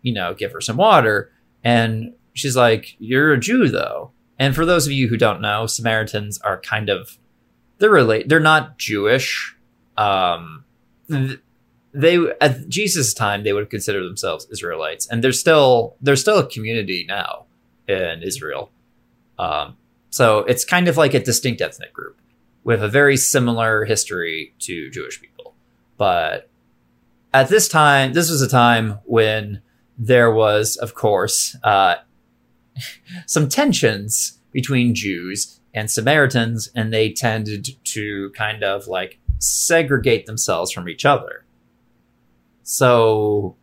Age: 20-39